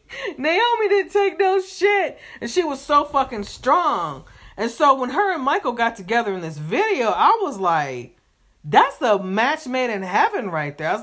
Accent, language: American, English